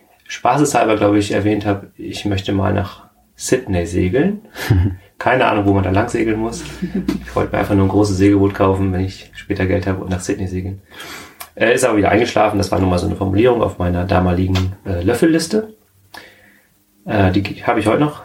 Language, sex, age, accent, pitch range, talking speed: German, male, 30-49, German, 95-110 Hz, 190 wpm